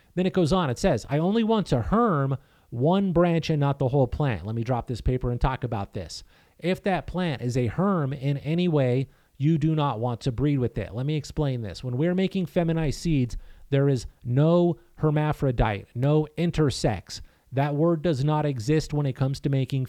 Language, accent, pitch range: English, American, 125-160 Hz